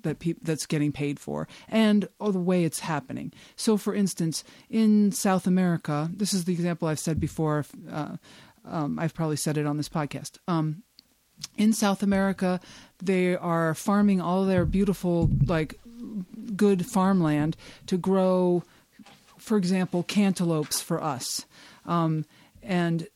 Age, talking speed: 50-69, 145 wpm